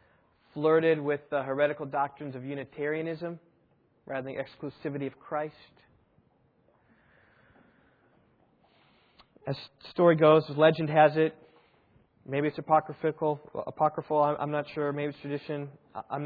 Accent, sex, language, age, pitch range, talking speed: American, male, English, 20-39, 145-160 Hz, 115 wpm